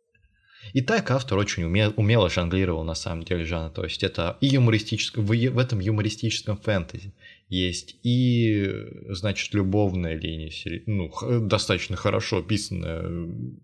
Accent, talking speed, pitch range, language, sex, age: native, 130 wpm, 90-110 Hz, Russian, male, 20-39